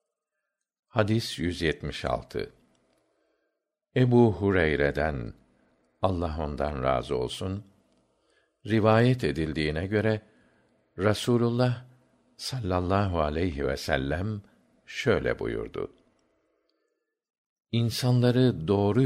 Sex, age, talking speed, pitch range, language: male, 60-79, 65 wpm, 90-120 Hz, Turkish